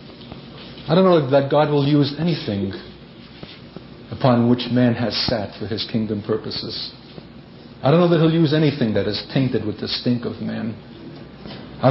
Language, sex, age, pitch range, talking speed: English, male, 50-69, 110-135 Hz, 165 wpm